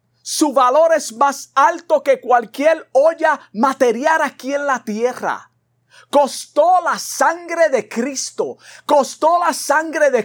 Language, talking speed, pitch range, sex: Spanish, 130 wpm, 235-315 Hz, male